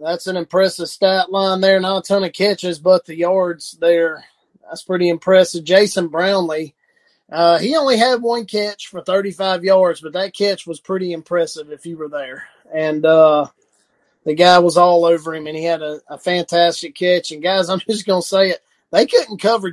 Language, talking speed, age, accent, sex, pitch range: English, 200 wpm, 30-49, American, male, 165-190 Hz